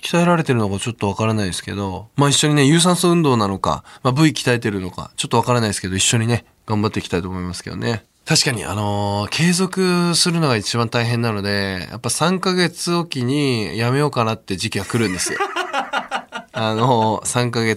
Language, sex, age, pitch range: Japanese, male, 20-39, 105-155 Hz